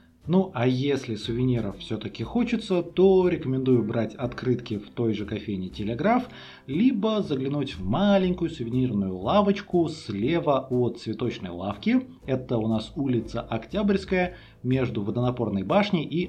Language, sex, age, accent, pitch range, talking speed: Russian, male, 30-49, native, 105-155 Hz, 125 wpm